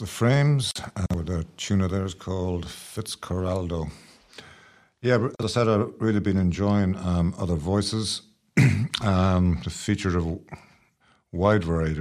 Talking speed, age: 140 wpm, 50-69